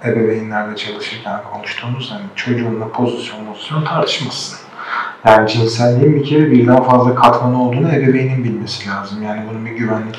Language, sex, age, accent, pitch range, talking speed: Turkish, male, 40-59, native, 110-135 Hz, 135 wpm